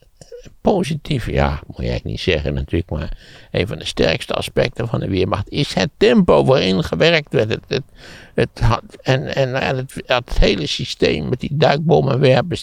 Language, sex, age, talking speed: Dutch, male, 60-79, 165 wpm